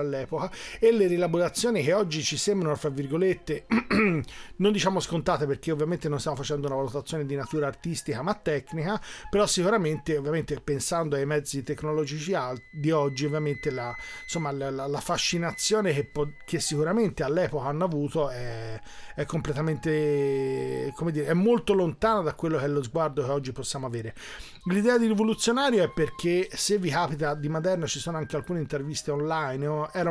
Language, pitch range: Italian, 145-175 Hz